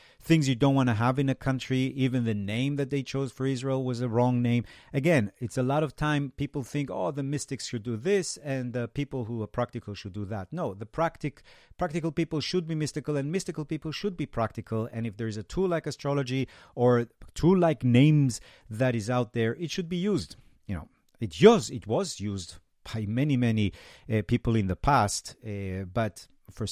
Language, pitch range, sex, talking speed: English, 105-140 Hz, male, 210 wpm